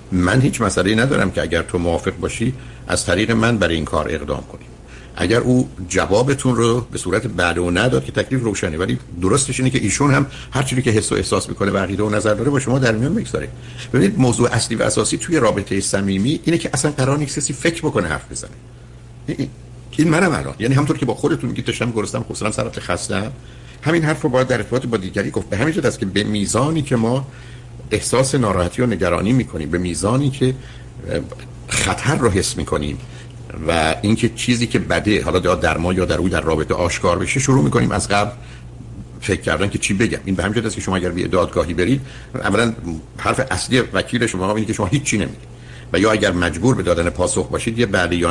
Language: Persian